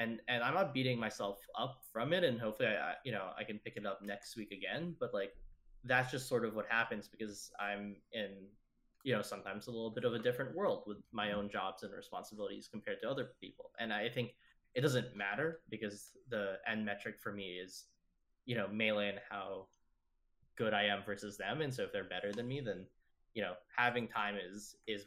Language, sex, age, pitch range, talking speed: English, male, 10-29, 100-120 Hz, 215 wpm